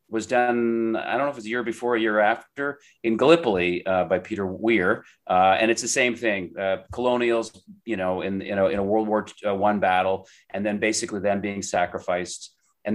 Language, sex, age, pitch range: English, male, 30-49, 95-115 Hz